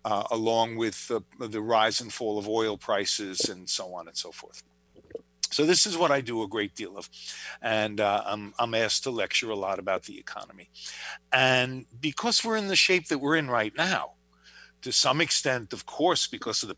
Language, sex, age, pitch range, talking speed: English, male, 50-69, 100-130 Hz, 210 wpm